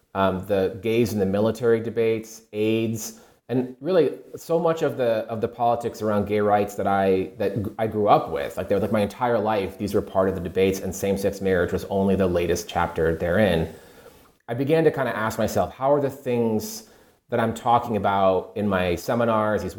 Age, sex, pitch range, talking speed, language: 30-49, male, 95-120 Hz, 210 wpm, English